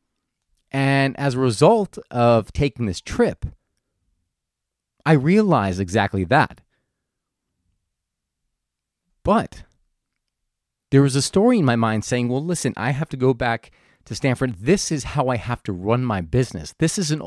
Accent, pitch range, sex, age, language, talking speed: American, 115-160 Hz, male, 40-59, English, 145 wpm